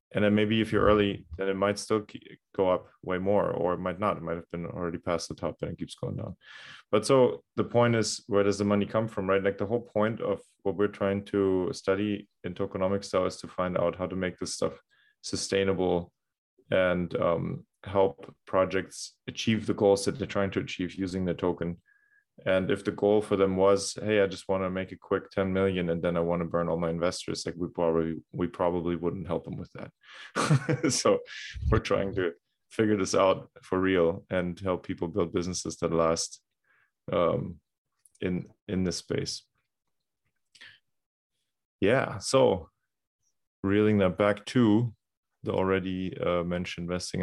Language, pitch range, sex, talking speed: English, 90-105 Hz, male, 190 wpm